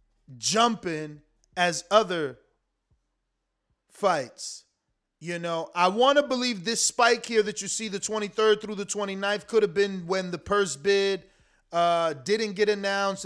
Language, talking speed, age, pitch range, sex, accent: English, 145 wpm, 30-49, 175-215 Hz, male, American